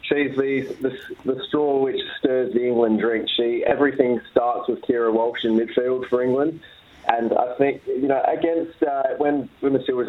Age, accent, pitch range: 20-39, Australian, 115-130 Hz